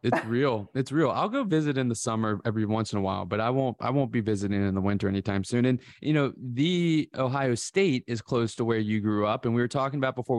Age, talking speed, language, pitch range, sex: 20-39, 265 wpm, English, 105-125 Hz, male